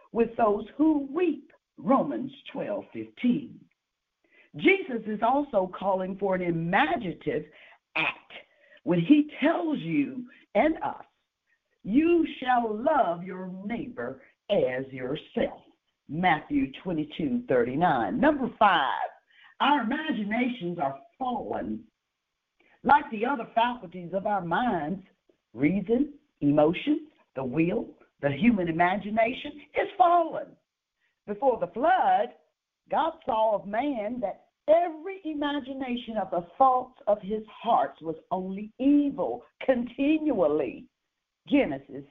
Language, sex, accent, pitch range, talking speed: English, female, American, 190-300 Hz, 105 wpm